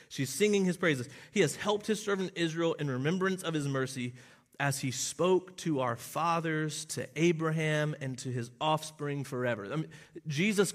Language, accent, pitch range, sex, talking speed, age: English, American, 140-185 Hz, male, 160 wpm, 30-49